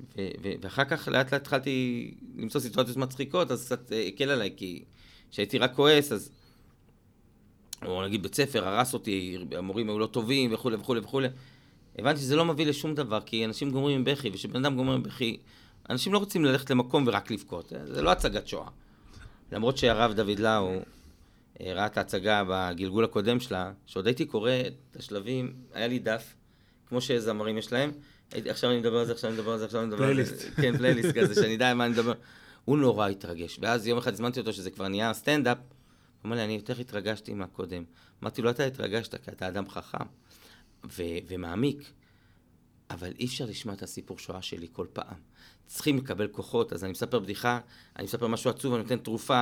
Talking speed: 195 wpm